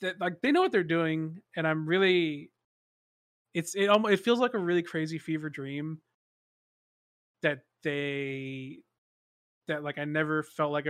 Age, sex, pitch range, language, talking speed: 20-39, male, 140-170 Hz, English, 160 wpm